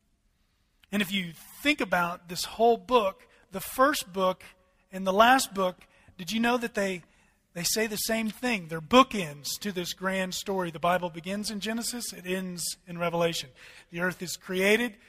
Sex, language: male, English